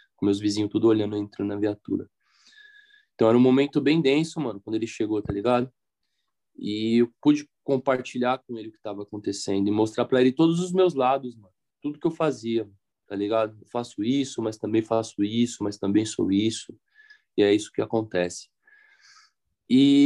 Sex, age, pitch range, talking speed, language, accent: male, 20-39, 110-150 Hz, 190 wpm, Portuguese, Brazilian